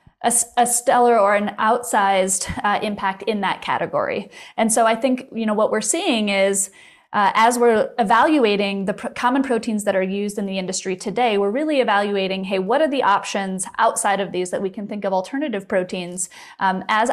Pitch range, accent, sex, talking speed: 195-245 Hz, American, female, 195 wpm